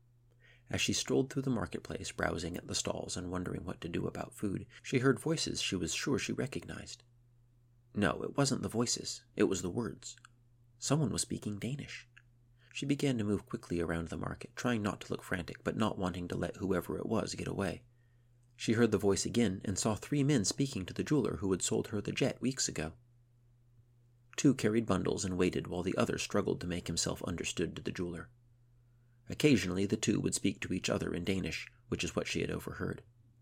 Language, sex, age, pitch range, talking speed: English, male, 40-59, 100-120 Hz, 205 wpm